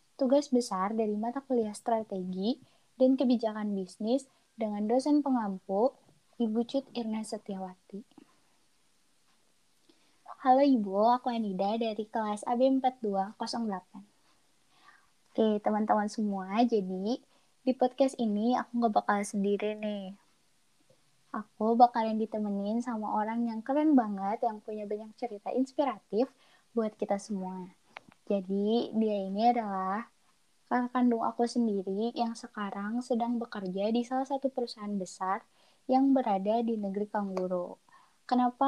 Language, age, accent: Indonesian, 20-39, native